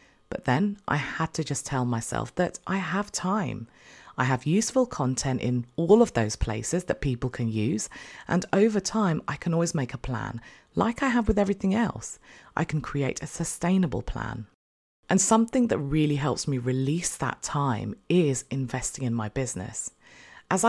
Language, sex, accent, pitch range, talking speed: English, female, British, 125-170 Hz, 175 wpm